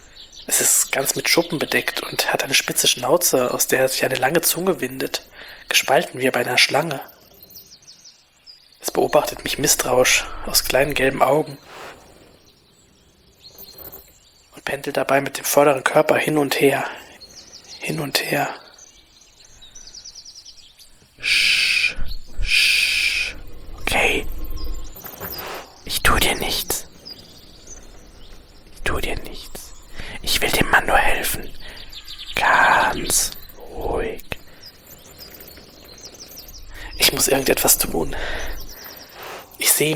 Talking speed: 105 wpm